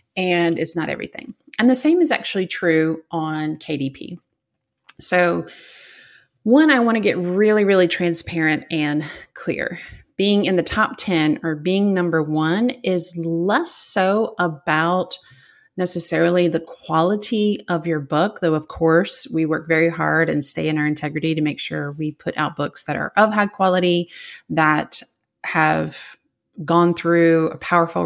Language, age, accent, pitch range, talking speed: English, 30-49, American, 155-190 Hz, 155 wpm